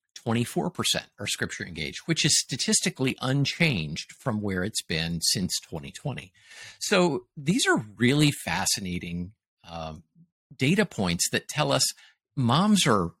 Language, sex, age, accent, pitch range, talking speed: English, male, 50-69, American, 100-135 Hz, 130 wpm